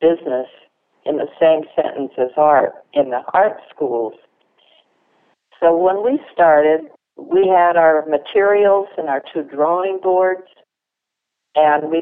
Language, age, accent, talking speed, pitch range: English, 60-79, American, 130 wpm, 145-175 Hz